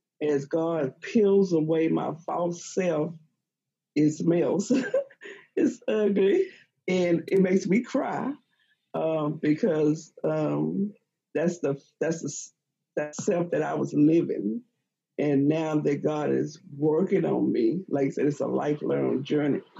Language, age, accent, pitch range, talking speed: English, 50-69, American, 145-180 Hz, 135 wpm